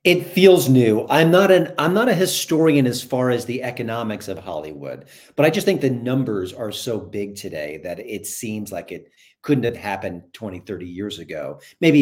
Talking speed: 200 wpm